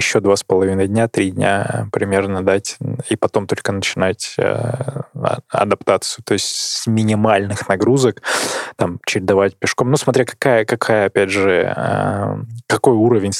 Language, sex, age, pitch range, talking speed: Russian, male, 20-39, 100-120 Hz, 145 wpm